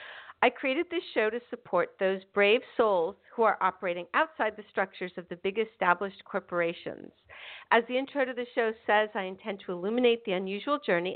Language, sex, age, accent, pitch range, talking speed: English, female, 50-69, American, 195-250 Hz, 185 wpm